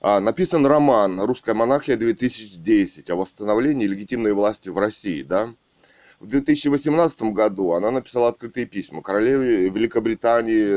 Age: 20-39